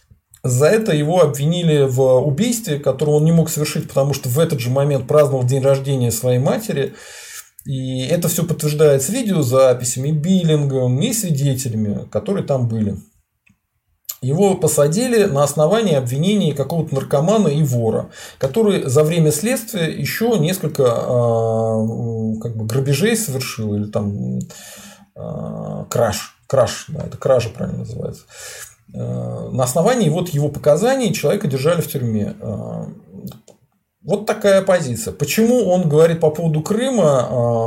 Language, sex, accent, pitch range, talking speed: Russian, male, native, 125-170 Hz, 125 wpm